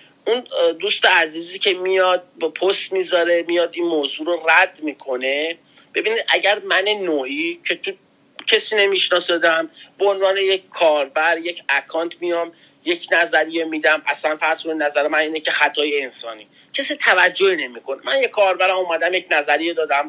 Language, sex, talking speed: Persian, male, 150 wpm